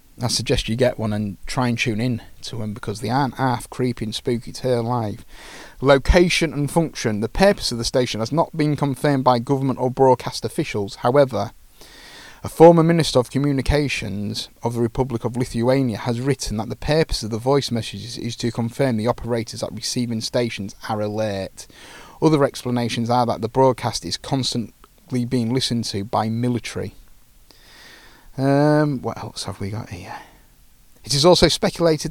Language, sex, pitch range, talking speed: English, male, 115-135 Hz, 175 wpm